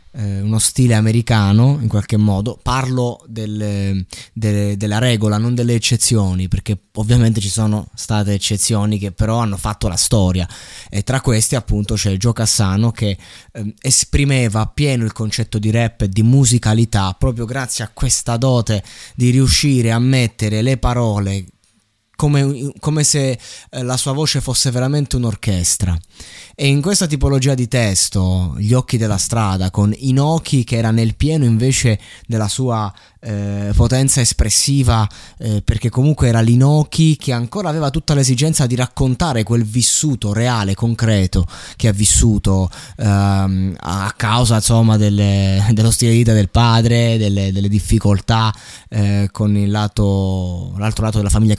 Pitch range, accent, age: 105-125 Hz, native, 20-39